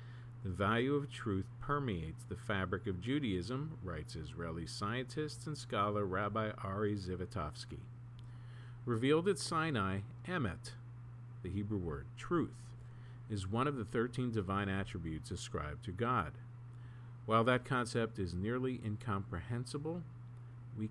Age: 50-69